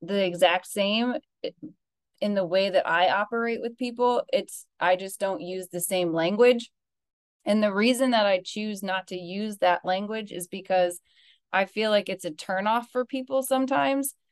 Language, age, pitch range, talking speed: English, 20-39, 175-220 Hz, 170 wpm